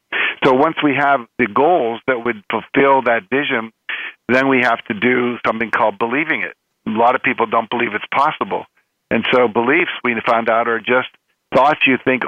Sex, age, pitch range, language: male, 50-69, 115-130 Hz, English